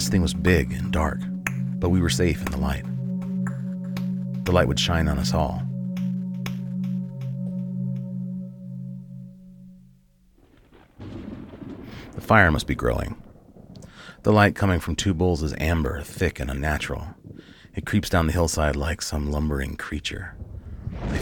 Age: 30-49